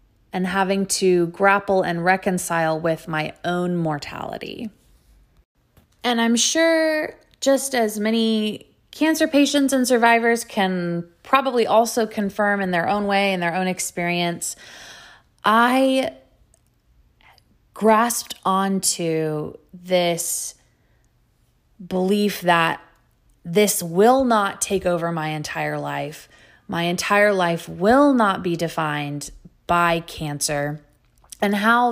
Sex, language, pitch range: female, English, 165-205 Hz